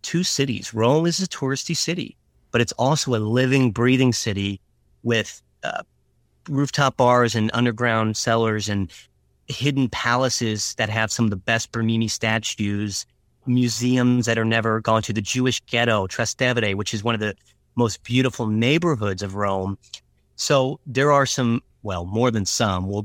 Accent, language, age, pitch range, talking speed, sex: American, English, 30-49, 105-125 Hz, 160 wpm, male